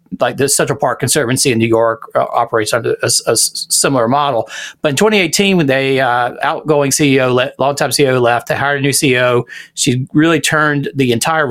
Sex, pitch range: male, 120-145 Hz